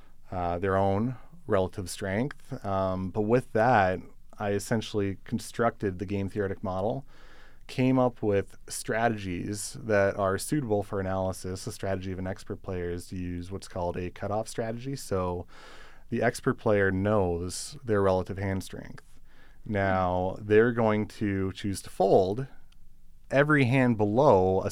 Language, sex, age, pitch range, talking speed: English, male, 30-49, 95-115 Hz, 145 wpm